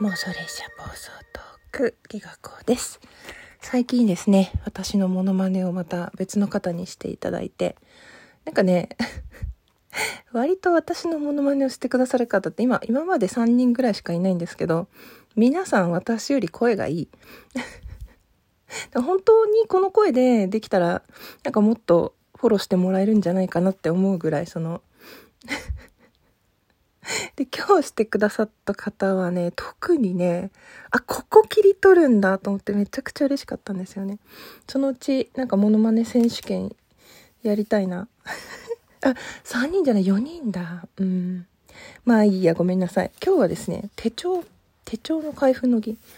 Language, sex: Japanese, female